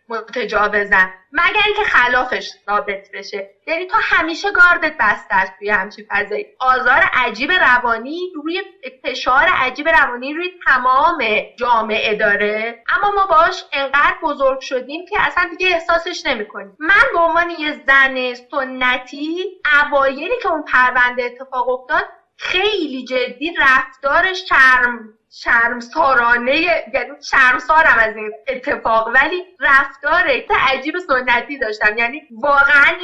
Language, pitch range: Persian, 240-330 Hz